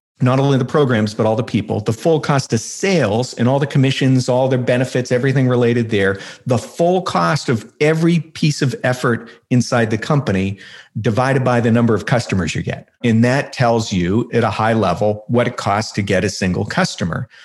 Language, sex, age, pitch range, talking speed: English, male, 50-69, 105-130 Hz, 200 wpm